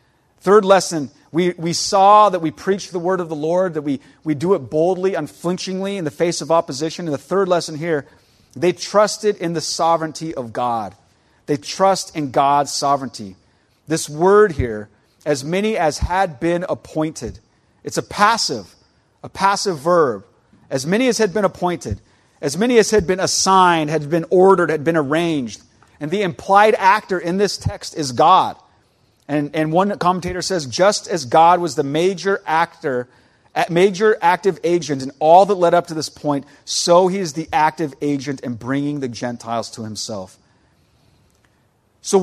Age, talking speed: 40-59, 170 wpm